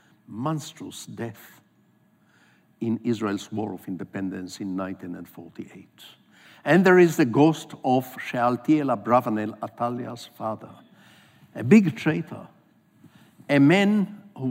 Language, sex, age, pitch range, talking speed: English, male, 60-79, 125-175 Hz, 105 wpm